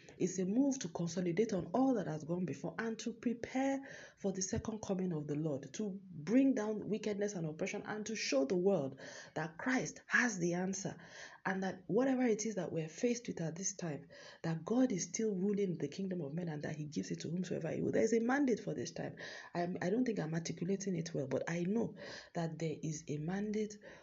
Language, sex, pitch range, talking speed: English, female, 155-210 Hz, 220 wpm